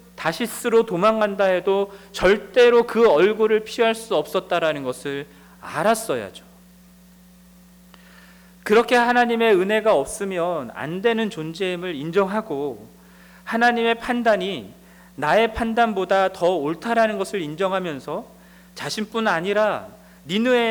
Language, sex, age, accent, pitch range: Korean, male, 40-59, native, 180-225 Hz